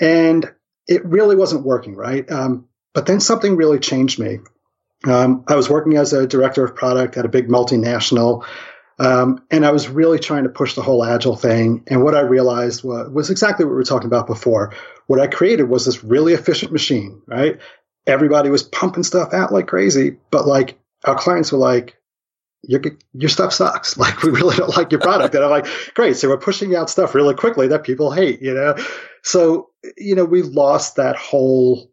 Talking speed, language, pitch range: 200 wpm, English, 125-165 Hz